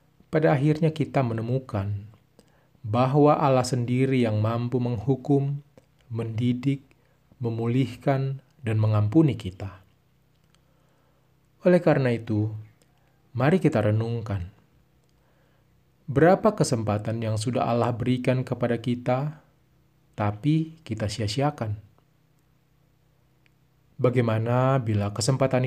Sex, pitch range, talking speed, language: male, 115-145 Hz, 80 wpm, Indonesian